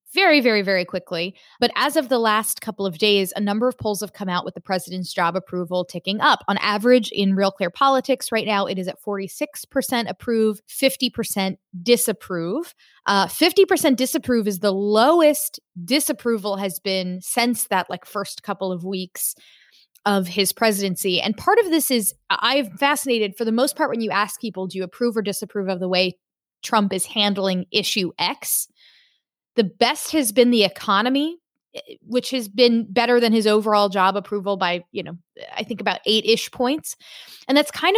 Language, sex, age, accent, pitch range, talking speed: English, female, 20-39, American, 190-245 Hz, 185 wpm